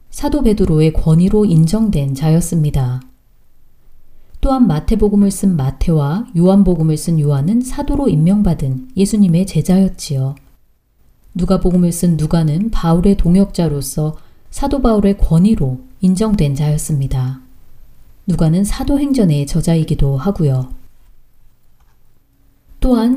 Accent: native